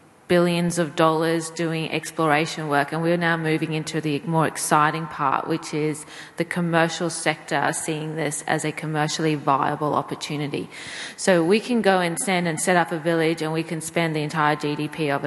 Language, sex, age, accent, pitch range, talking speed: English, female, 30-49, Australian, 155-170 Hz, 180 wpm